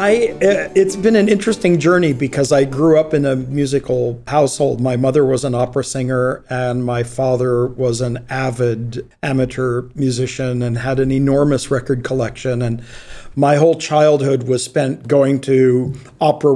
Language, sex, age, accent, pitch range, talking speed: English, male, 50-69, American, 130-155 Hz, 150 wpm